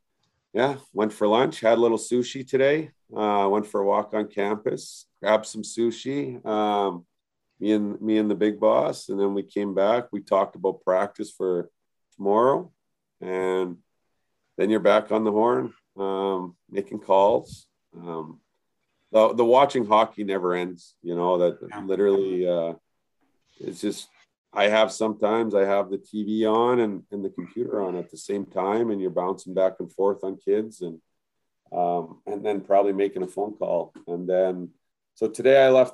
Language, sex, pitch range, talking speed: English, male, 95-115 Hz, 170 wpm